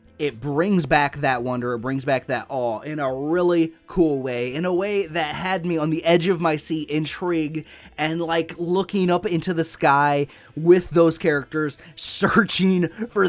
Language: English